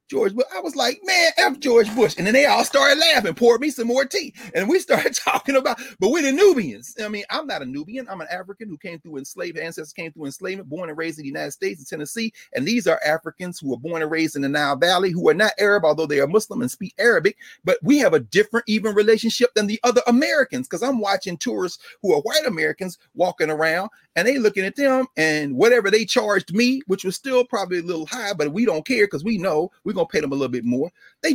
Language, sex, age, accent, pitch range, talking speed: English, male, 40-59, American, 175-265 Hz, 255 wpm